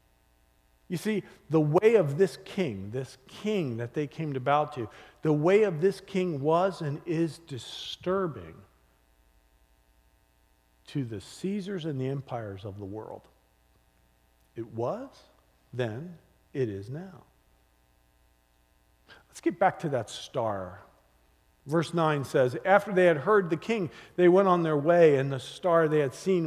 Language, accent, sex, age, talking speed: English, American, male, 50-69, 145 wpm